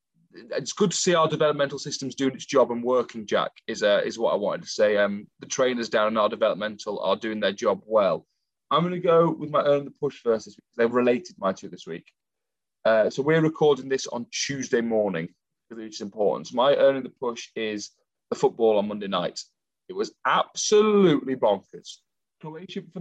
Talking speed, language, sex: 205 wpm, English, male